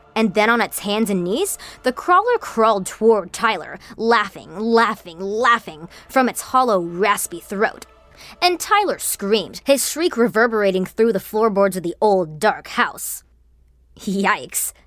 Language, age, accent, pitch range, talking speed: English, 20-39, American, 195-275 Hz, 140 wpm